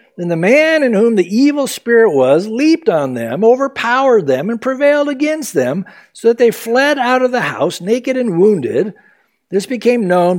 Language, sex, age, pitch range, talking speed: English, male, 60-79, 170-245 Hz, 185 wpm